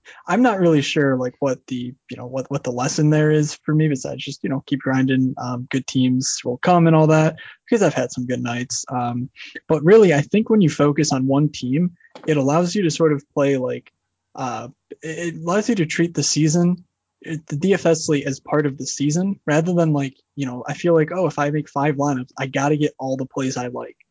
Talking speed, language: 235 wpm, English